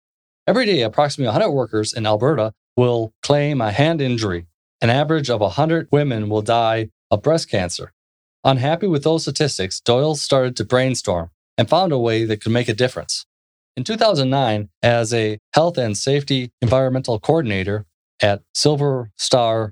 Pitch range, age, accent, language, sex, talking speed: 105-145 Hz, 20-39, American, English, male, 155 wpm